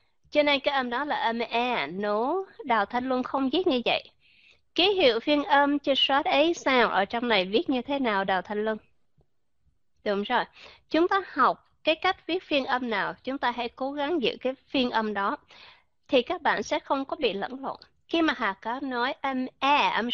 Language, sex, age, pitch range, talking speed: Vietnamese, female, 20-39, 240-335 Hz, 220 wpm